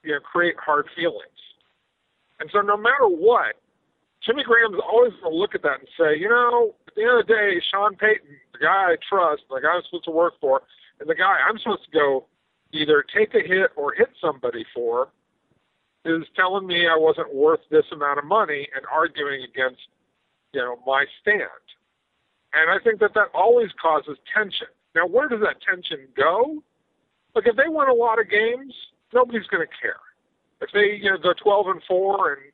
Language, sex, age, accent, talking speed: English, male, 50-69, American, 200 wpm